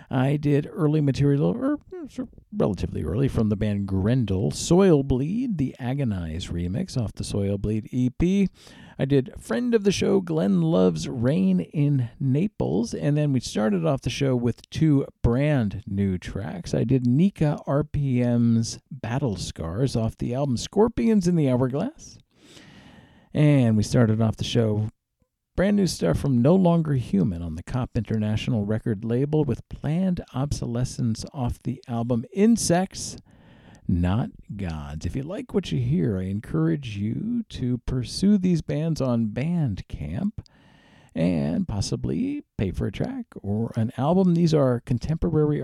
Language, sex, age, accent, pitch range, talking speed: English, male, 50-69, American, 115-170 Hz, 145 wpm